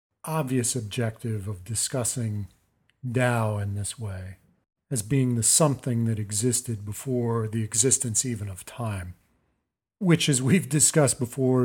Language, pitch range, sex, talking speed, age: English, 105-135 Hz, male, 130 wpm, 50-69